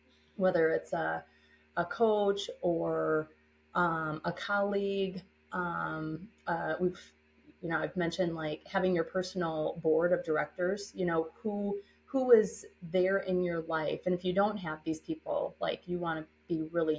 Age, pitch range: 30-49, 155-200 Hz